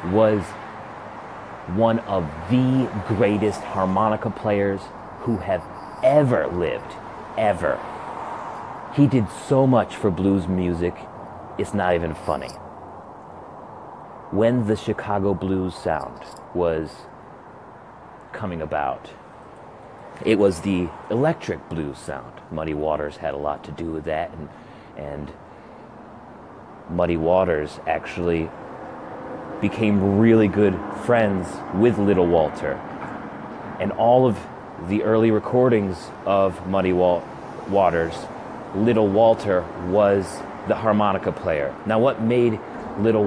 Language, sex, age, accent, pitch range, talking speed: English, male, 30-49, American, 90-110 Hz, 105 wpm